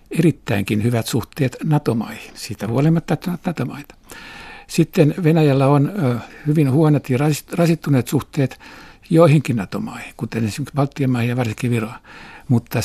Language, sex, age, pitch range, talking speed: Finnish, male, 60-79, 115-145 Hz, 120 wpm